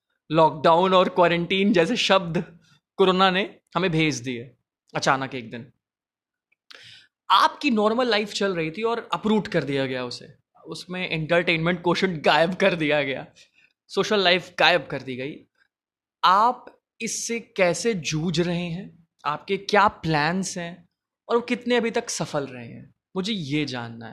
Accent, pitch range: native, 145-215 Hz